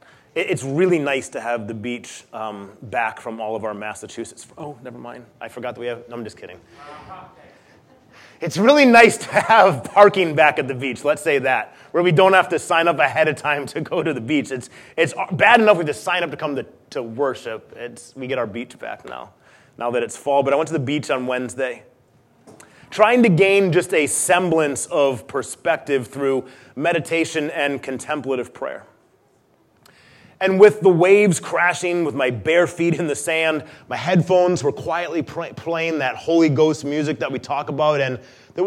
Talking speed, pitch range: 195 wpm, 130-170 Hz